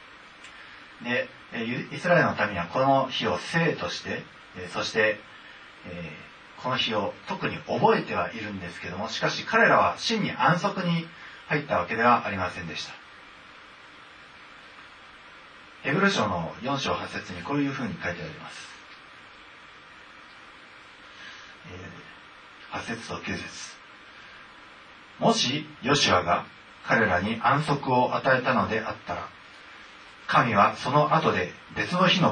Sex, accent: male, native